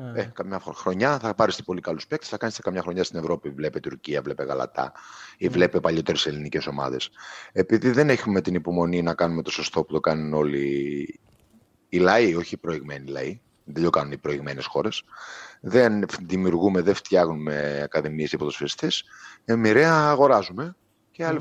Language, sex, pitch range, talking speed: Greek, male, 85-115 Hz, 165 wpm